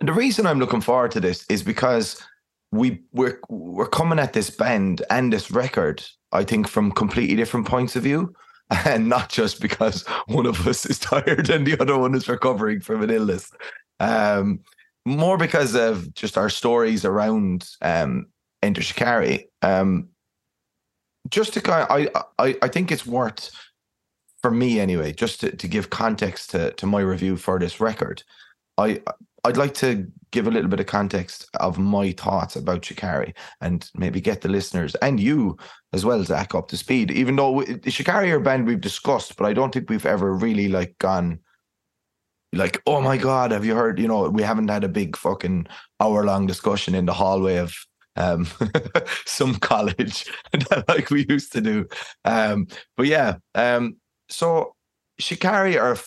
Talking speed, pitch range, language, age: 180 wpm, 95-140 Hz, English, 20-39